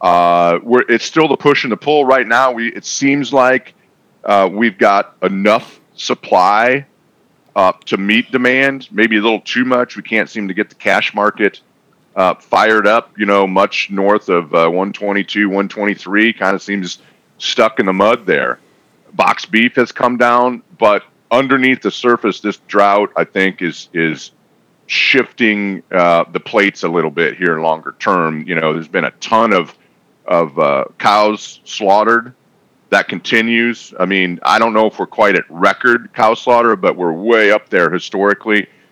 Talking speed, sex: 175 wpm, male